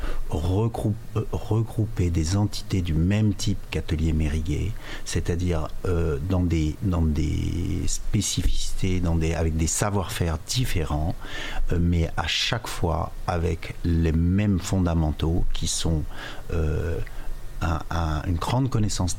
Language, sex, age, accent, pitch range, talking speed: French, male, 50-69, French, 85-105 Hz, 100 wpm